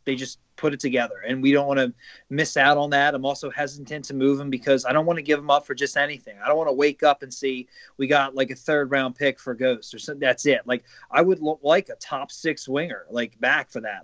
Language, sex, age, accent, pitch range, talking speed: English, male, 30-49, American, 135-185 Hz, 280 wpm